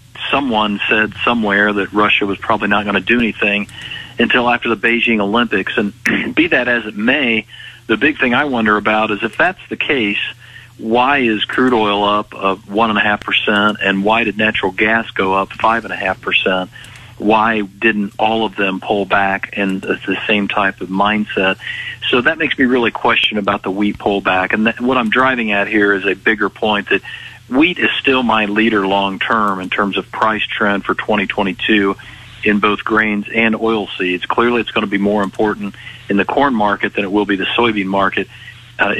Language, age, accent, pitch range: English, 50-69, American, 100-115 Hz